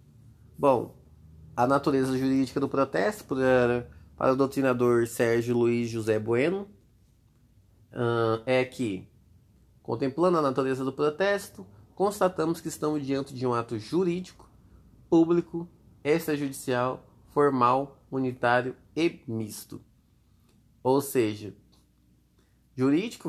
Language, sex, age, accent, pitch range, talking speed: Portuguese, male, 20-39, Brazilian, 115-140 Hz, 100 wpm